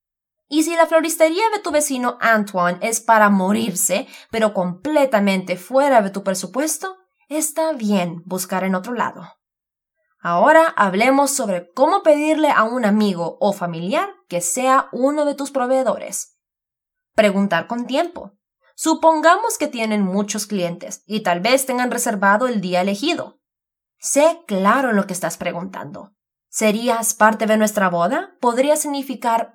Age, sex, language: 20-39, female, English